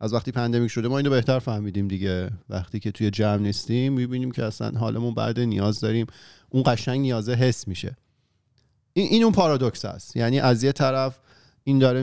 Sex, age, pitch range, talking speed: male, 40-59, 110-135 Hz, 185 wpm